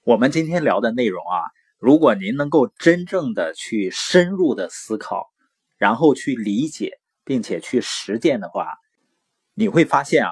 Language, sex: Chinese, male